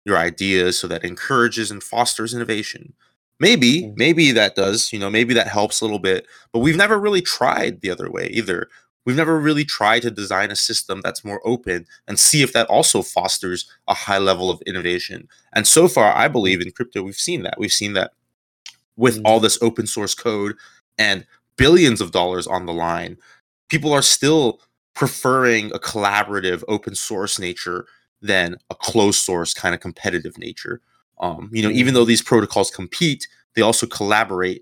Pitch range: 95-120 Hz